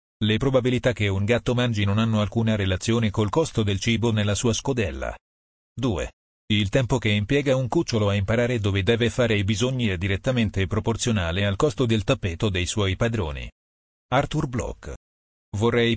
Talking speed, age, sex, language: 165 wpm, 40-59, male, Italian